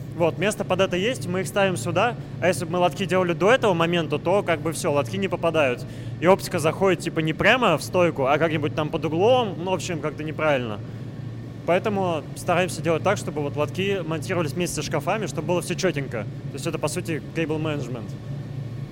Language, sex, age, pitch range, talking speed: Russian, male, 20-39, 140-170 Hz, 200 wpm